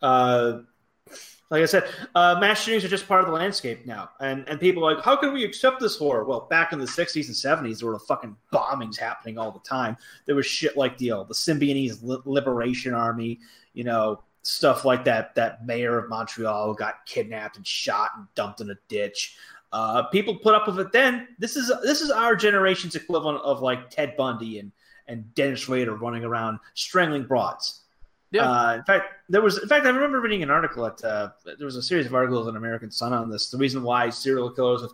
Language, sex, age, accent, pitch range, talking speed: English, male, 30-49, American, 120-165 Hz, 220 wpm